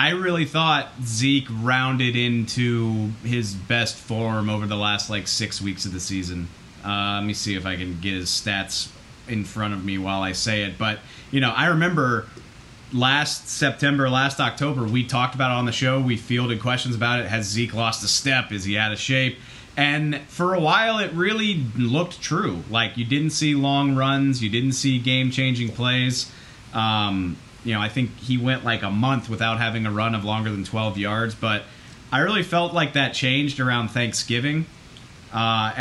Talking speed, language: 195 wpm, English